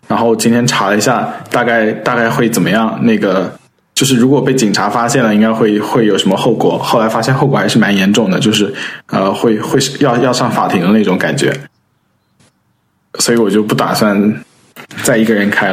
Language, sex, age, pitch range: Chinese, male, 20-39, 105-125 Hz